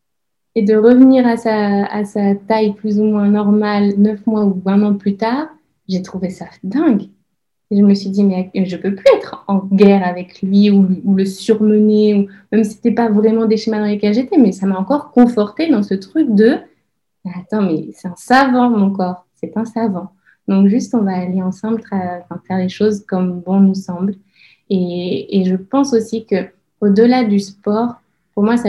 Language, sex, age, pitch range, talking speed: French, female, 20-39, 190-220 Hz, 205 wpm